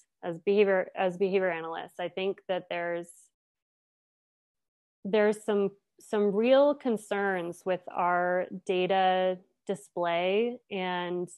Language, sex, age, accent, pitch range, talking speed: English, female, 20-39, American, 185-220 Hz, 100 wpm